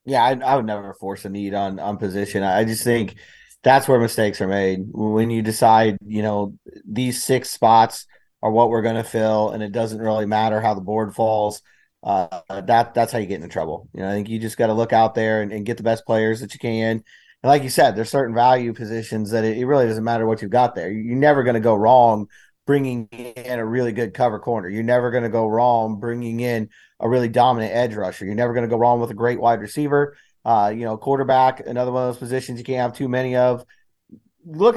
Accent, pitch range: American, 110-135 Hz